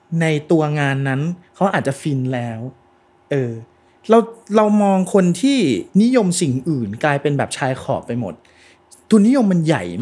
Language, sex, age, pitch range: Thai, male, 30-49, 135-205 Hz